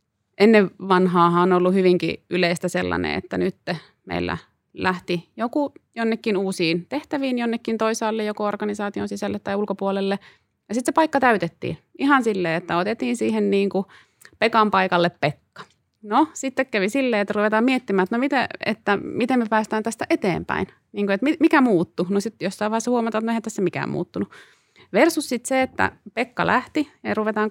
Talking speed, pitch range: 165 wpm, 180-235 Hz